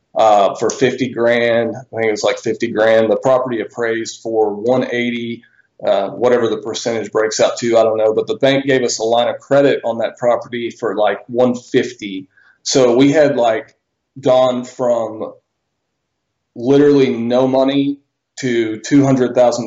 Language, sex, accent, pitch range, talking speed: English, male, American, 110-125 Hz, 170 wpm